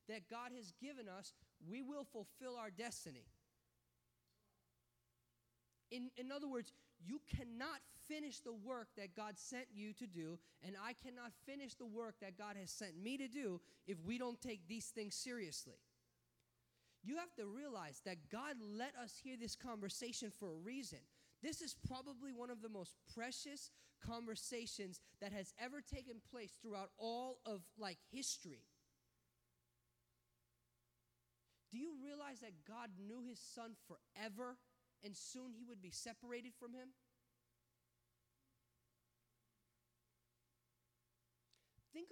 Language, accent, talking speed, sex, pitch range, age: English, American, 135 wpm, male, 160-245 Hz, 30-49